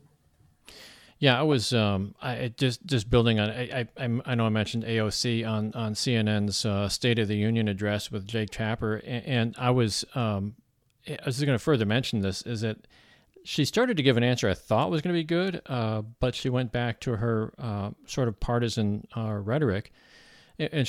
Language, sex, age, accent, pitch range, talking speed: English, male, 40-59, American, 110-130 Hz, 195 wpm